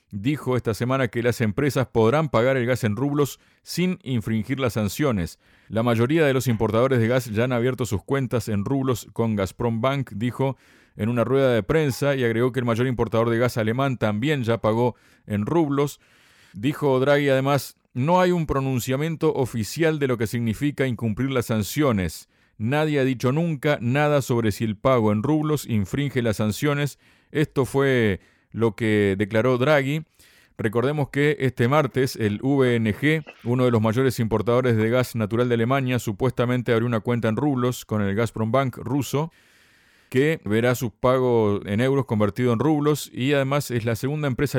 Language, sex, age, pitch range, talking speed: Spanish, male, 40-59, 115-140 Hz, 175 wpm